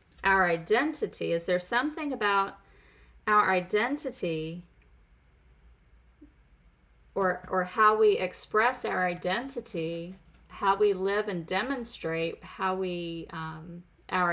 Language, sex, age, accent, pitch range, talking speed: English, female, 30-49, American, 145-200 Hz, 100 wpm